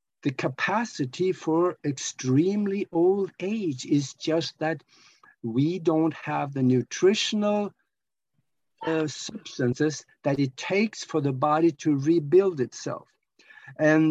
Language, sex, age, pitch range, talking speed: English, male, 60-79, 130-180 Hz, 110 wpm